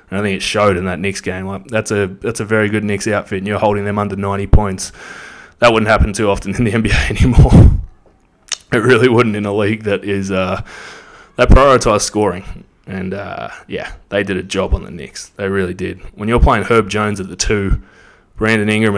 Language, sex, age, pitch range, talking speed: English, male, 20-39, 95-110 Hz, 210 wpm